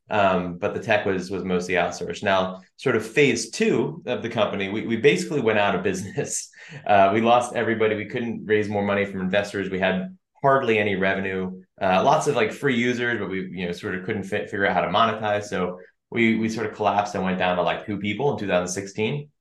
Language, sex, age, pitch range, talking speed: English, male, 30-49, 90-105 Hz, 225 wpm